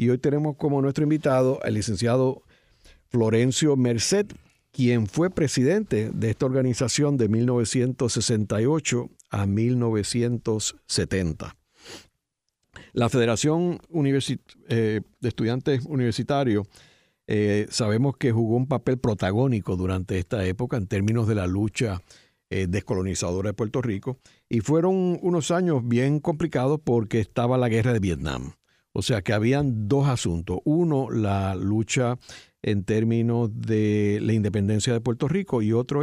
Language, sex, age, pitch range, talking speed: Spanish, male, 60-79, 105-130 Hz, 130 wpm